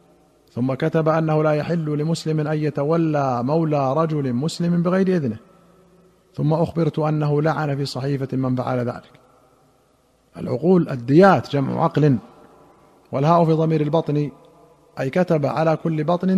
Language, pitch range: Arabic, 135-165 Hz